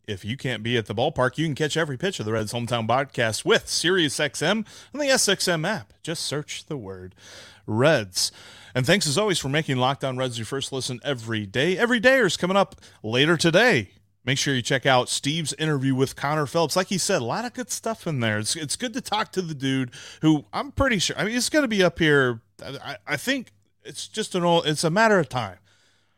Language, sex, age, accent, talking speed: English, male, 30-49, American, 230 wpm